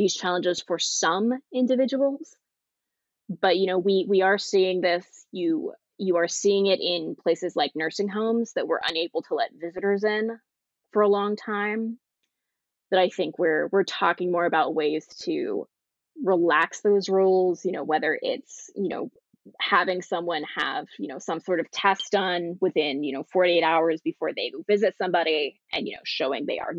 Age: 20-39